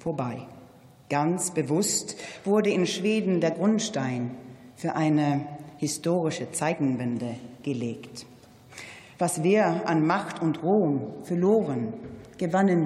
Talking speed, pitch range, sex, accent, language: 100 wpm, 145-180 Hz, female, German, German